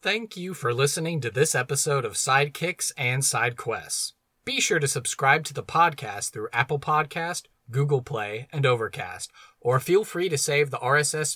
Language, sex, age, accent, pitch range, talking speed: English, male, 30-49, American, 125-165 Hz, 170 wpm